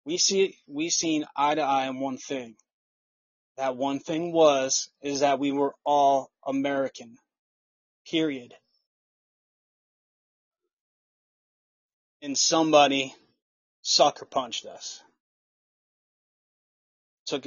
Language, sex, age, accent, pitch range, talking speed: English, male, 20-39, American, 135-155 Hz, 95 wpm